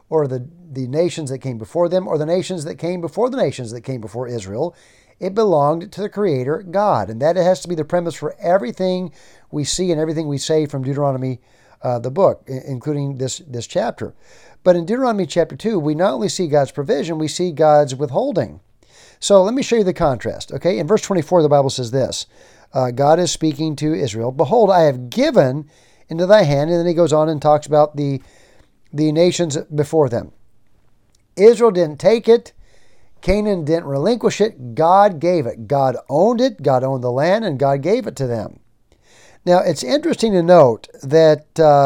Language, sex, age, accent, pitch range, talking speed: English, male, 50-69, American, 135-180 Hz, 195 wpm